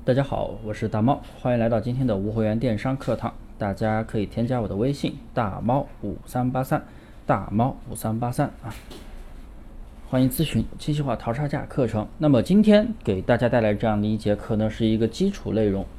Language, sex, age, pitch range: Chinese, male, 20-39, 105-145 Hz